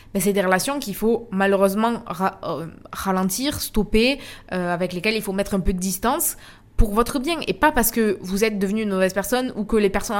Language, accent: French, French